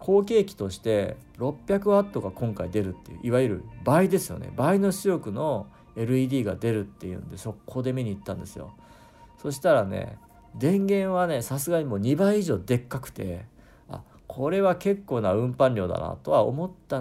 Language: Japanese